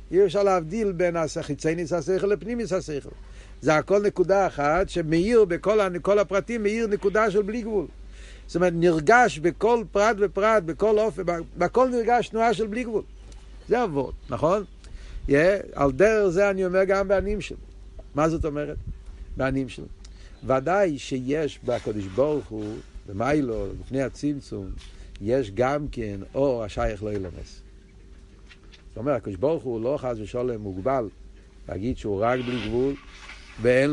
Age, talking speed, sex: 50-69, 140 wpm, male